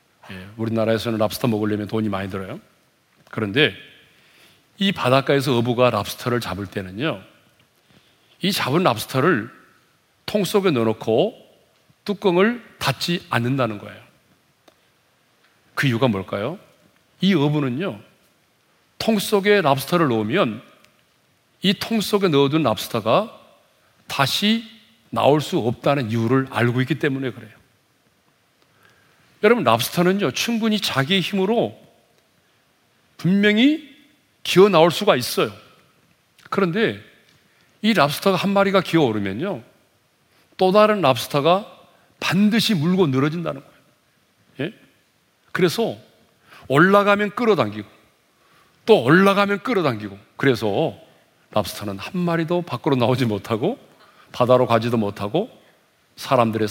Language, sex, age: Korean, male, 40-59